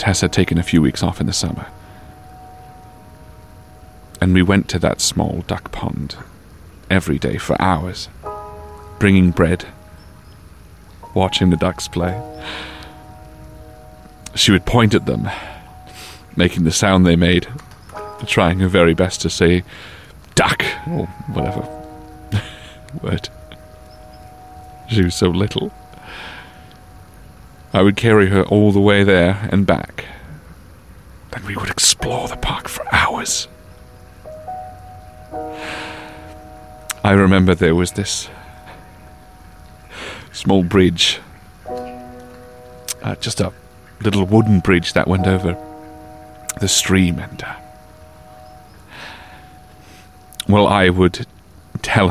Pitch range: 90-105 Hz